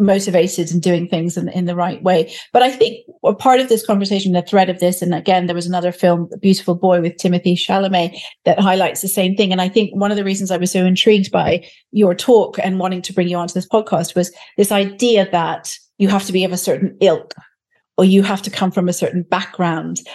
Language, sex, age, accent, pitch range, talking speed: English, female, 40-59, British, 175-200 Hz, 240 wpm